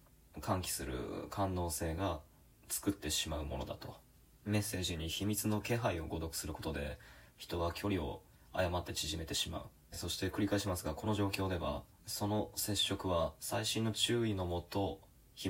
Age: 20-39